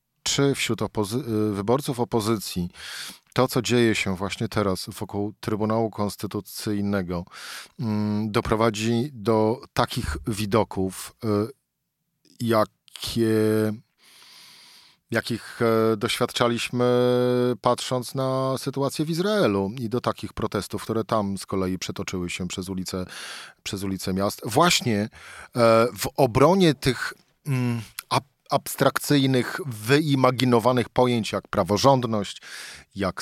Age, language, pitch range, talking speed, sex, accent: 40-59, Polish, 100-125 Hz, 100 wpm, male, native